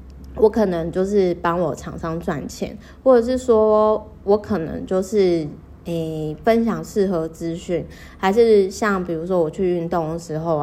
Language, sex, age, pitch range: Chinese, female, 20-39, 165-200 Hz